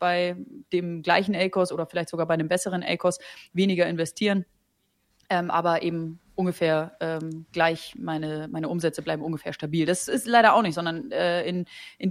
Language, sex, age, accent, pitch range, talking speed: German, female, 30-49, German, 170-200 Hz, 170 wpm